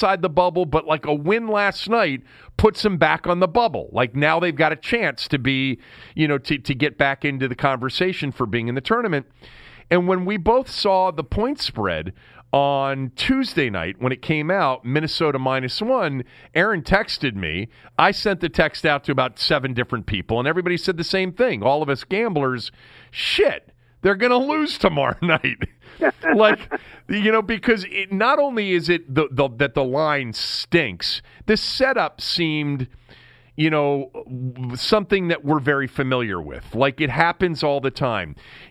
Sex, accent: male, American